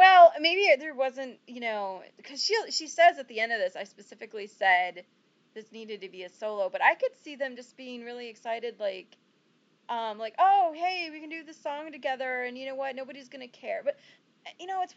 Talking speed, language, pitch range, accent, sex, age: 225 wpm, English, 200-285 Hz, American, female, 30-49